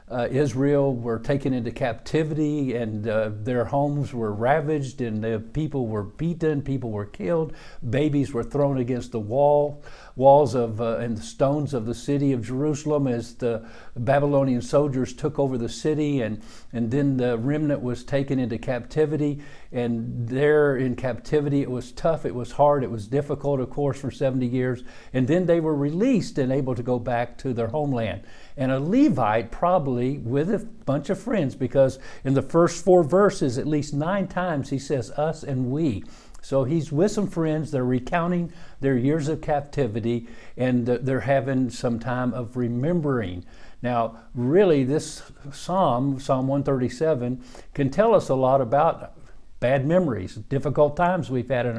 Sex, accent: male, American